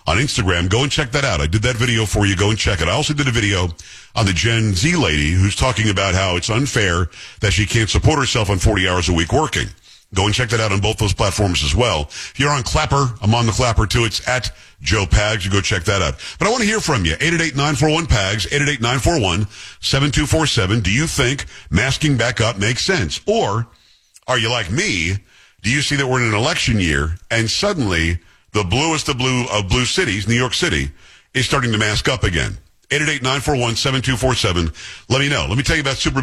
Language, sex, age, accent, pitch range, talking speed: English, male, 50-69, American, 100-130 Hz, 220 wpm